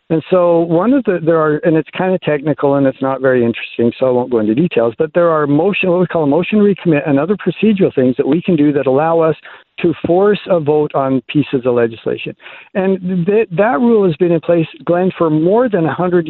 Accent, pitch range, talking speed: American, 140-180 Hz, 240 wpm